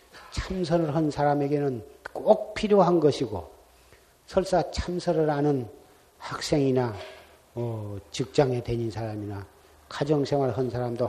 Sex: male